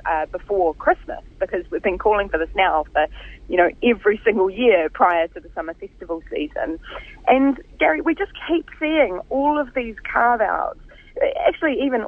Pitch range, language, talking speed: 185-260 Hz, English, 170 wpm